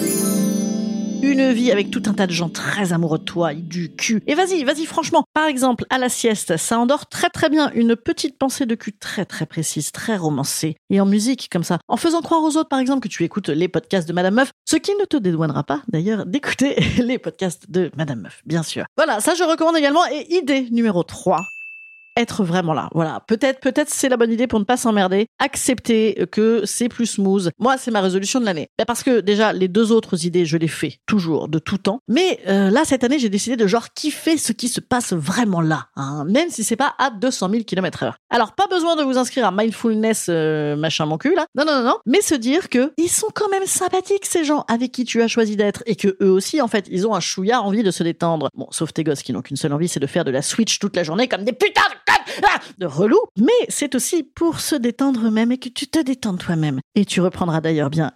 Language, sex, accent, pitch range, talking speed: French, female, French, 185-275 Hz, 245 wpm